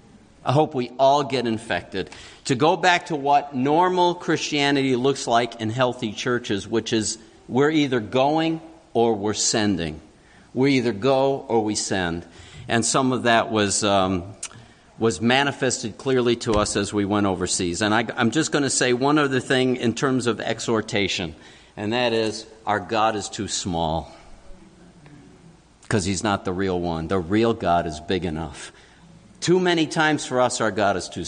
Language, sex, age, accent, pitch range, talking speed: English, male, 50-69, American, 110-150 Hz, 175 wpm